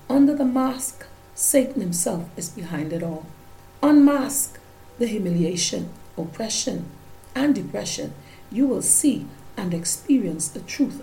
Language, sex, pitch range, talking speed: English, female, 170-235 Hz, 120 wpm